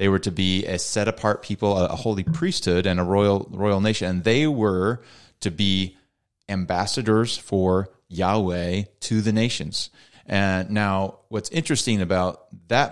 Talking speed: 150 wpm